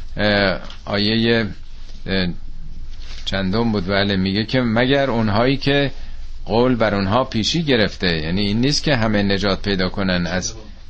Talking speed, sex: 125 wpm, male